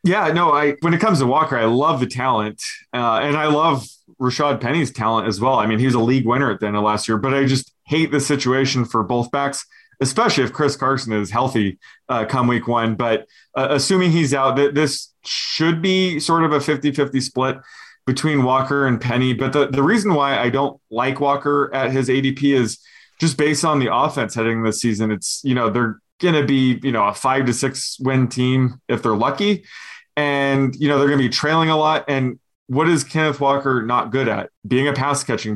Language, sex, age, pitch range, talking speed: English, male, 20-39, 120-145 Hz, 220 wpm